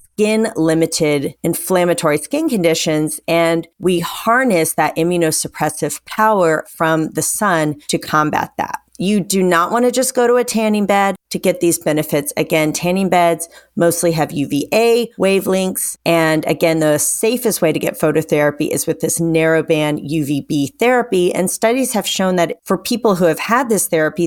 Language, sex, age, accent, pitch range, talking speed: English, female, 40-59, American, 155-195 Hz, 155 wpm